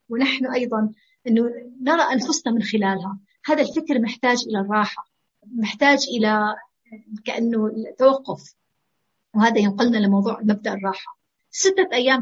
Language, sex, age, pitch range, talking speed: Arabic, female, 30-49, 220-275 Hz, 115 wpm